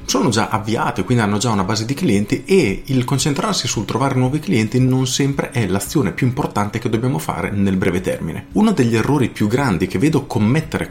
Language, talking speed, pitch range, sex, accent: Italian, 205 wpm, 105-140 Hz, male, native